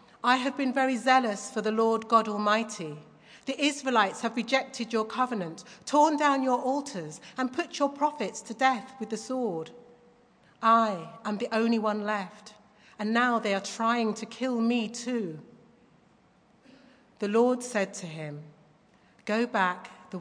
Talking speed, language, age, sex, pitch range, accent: 155 wpm, English, 40-59, female, 190-245 Hz, British